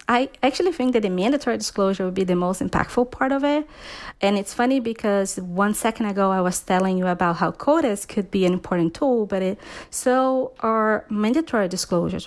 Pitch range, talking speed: 190-230 Hz, 195 wpm